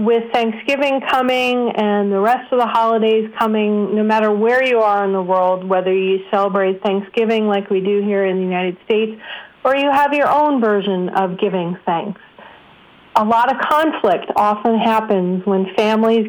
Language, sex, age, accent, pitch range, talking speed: English, female, 40-59, American, 195-235 Hz, 175 wpm